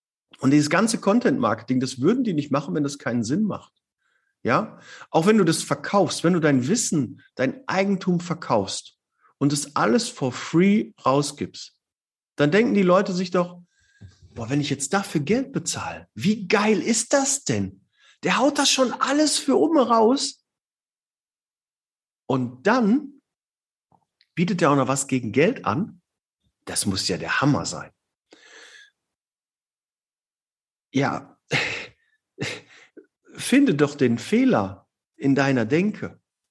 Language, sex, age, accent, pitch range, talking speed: German, male, 50-69, German, 120-200 Hz, 140 wpm